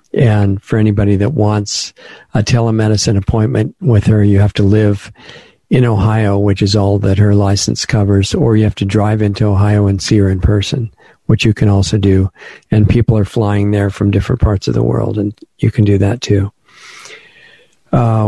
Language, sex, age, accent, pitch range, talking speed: English, male, 50-69, American, 100-110 Hz, 190 wpm